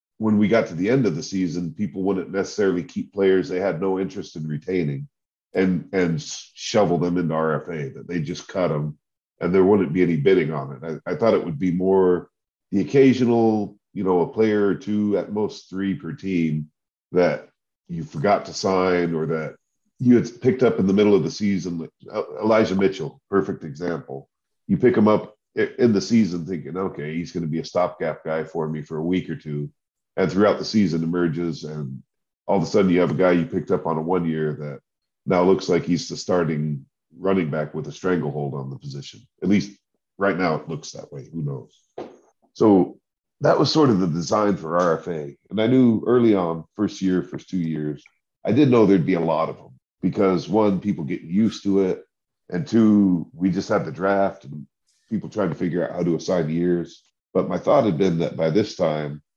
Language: English